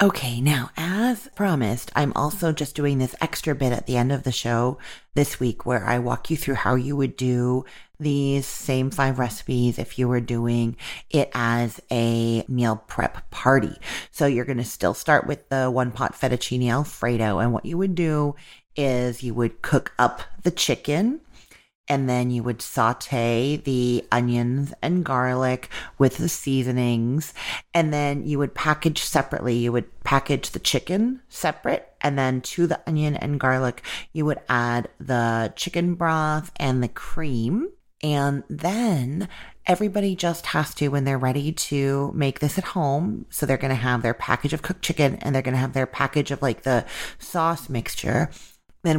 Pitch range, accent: 125-150 Hz, American